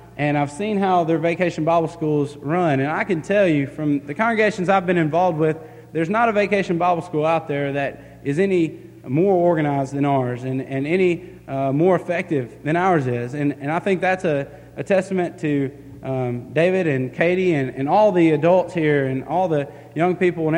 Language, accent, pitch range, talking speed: English, American, 140-180 Hz, 205 wpm